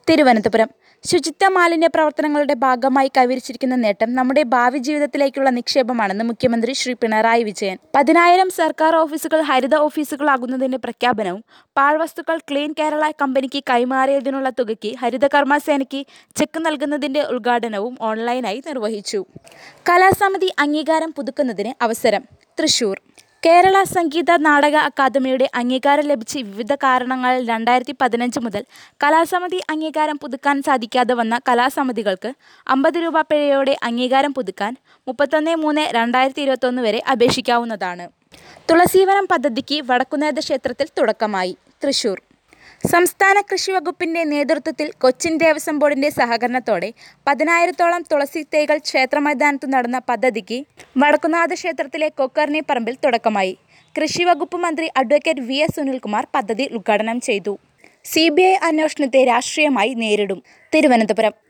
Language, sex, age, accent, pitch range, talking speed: Malayalam, female, 20-39, native, 245-310 Hz, 100 wpm